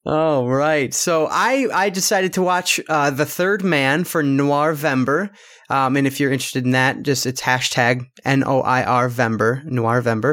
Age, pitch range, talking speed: 30-49, 130-165 Hz, 165 wpm